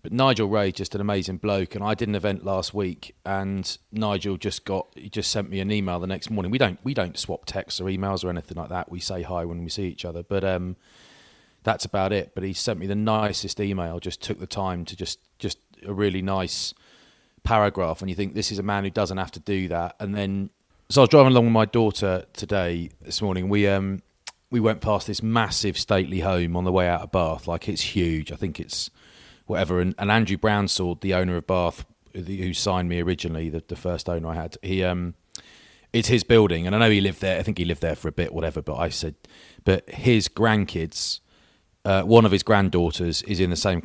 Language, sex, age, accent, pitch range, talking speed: English, male, 30-49, British, 85-105 Hz, 235 wpm